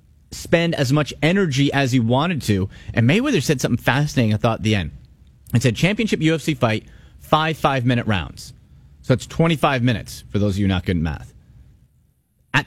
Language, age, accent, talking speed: English, 30-49, American, 190 wpm